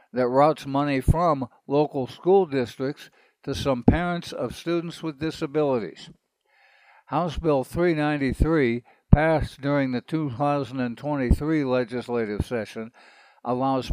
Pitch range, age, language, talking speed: 125-155 Hz, 60-79, English, 105 wpm